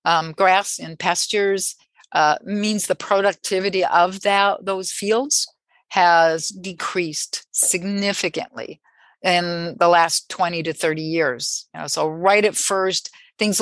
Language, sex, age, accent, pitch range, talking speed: English, female, 50-69, American, 170-205 Hz, 130 wpm